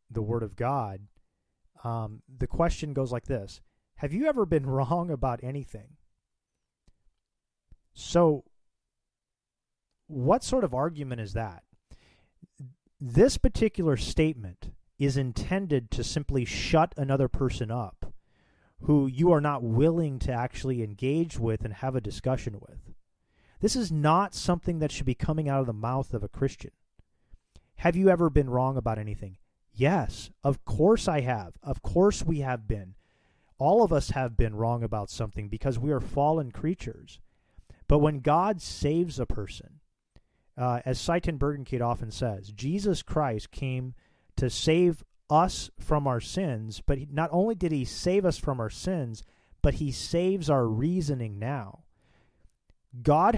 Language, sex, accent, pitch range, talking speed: English, male, American, 110-155 Hz, 150 wpm